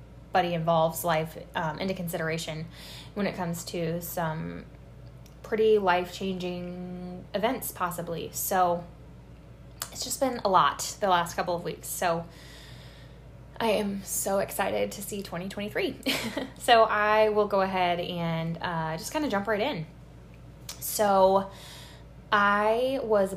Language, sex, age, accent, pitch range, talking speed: English, female, 10-29, American, 170-205 Hz, 130 wpm